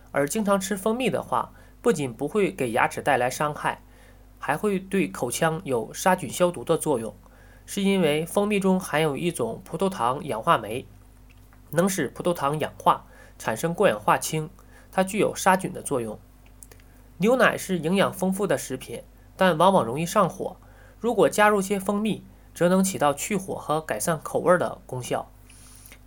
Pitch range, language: 120-190 Hz, Chinese